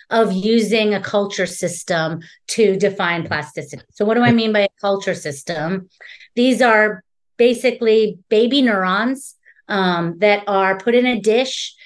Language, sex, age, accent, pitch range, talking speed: English, female, 30-49, American, 180-220 Hz, 145 wpm